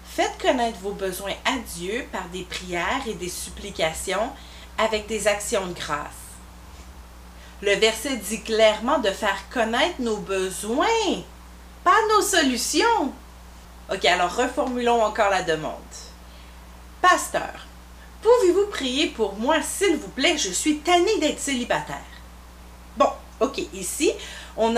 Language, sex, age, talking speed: English, female, 30-49, 125 wpm